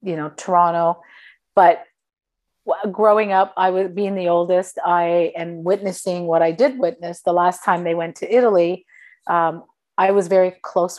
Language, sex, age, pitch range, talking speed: English, female, 40-59, 165-190 Hz, 165 wpm